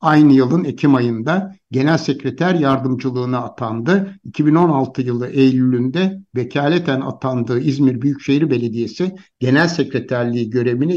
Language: Turkish